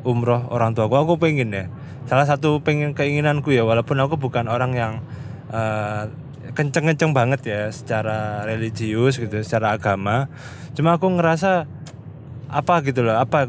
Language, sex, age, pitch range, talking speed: Indonesian, male, 20-39, 115-140 Hz, 140 wpm